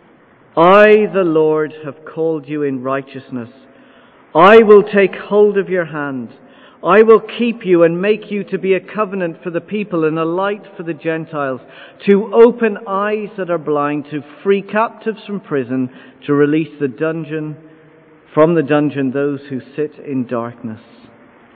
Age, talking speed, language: 50-69, 160 wpm, English